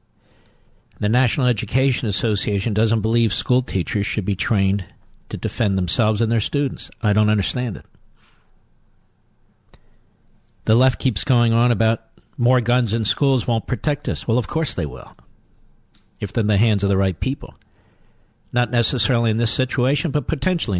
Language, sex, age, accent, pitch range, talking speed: English, male, 50-69, American, 100-125 Hz, 160 wpm